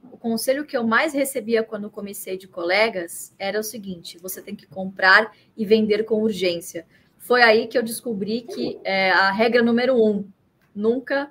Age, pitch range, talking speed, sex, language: 20-39, 200-270 Hz, 170 wpm, female, Portuguese